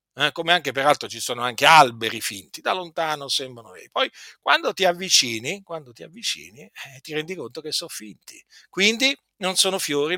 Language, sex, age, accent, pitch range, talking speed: Italian, male, 50-69, native, 125-180 Hz, 175 wpm